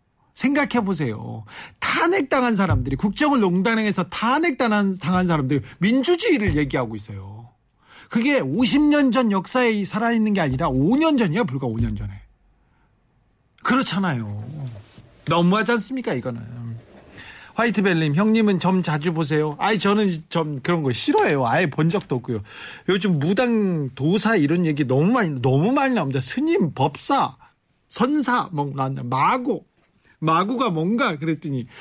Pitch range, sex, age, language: 135-205 Hz, male, 40-59, Korean